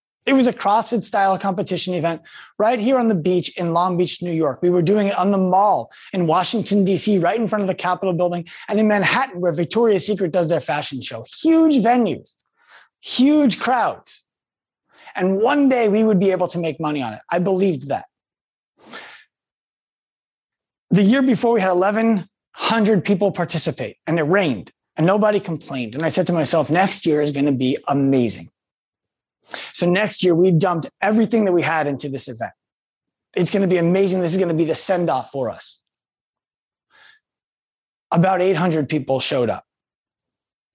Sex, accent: male, American